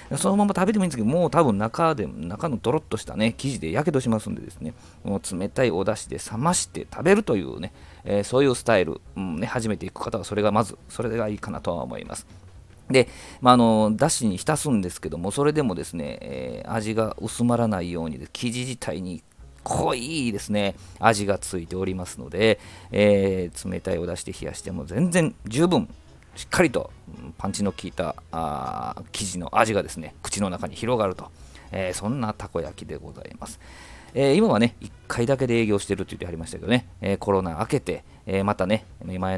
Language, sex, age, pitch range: Japanese, male, 40-59, 90-115 Hz